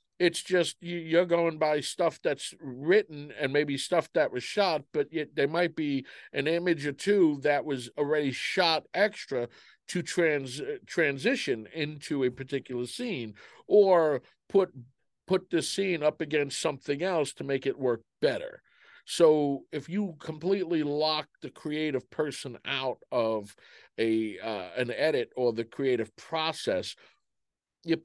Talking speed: 145 wpm